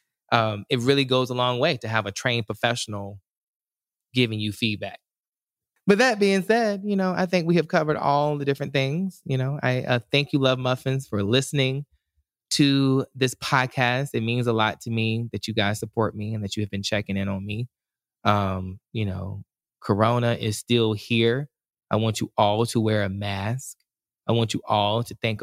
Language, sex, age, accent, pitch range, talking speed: English, male, 20-39, American, 105-135 Hz, 200 wpm